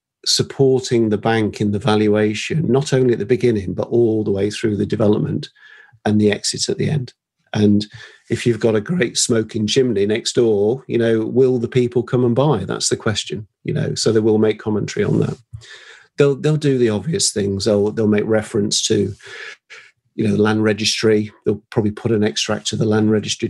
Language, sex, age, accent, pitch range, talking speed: English, male, 40-59, British, 105-125 Hz, 200 wpm